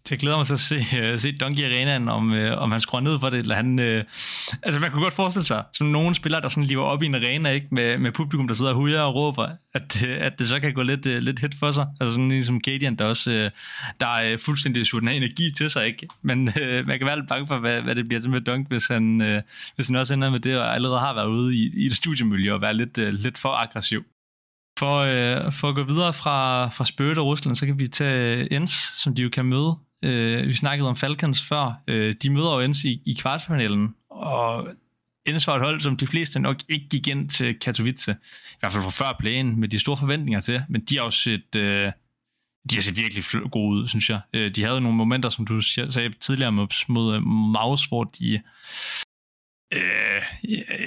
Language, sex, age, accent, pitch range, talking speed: Danish, male, 20-39, native, 115-140 Hz, 240 wpm